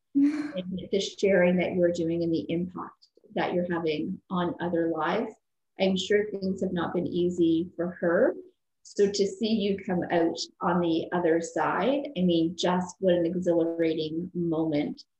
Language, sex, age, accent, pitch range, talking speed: English, female, 30-49, American, 170-195 Hz, 160 wpm